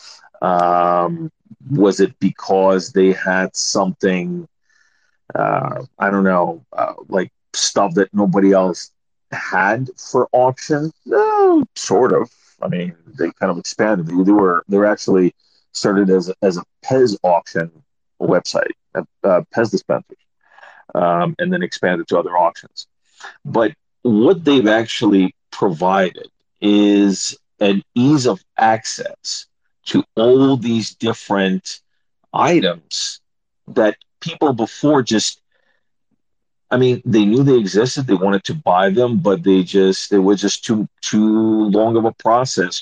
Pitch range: 95-125 Hz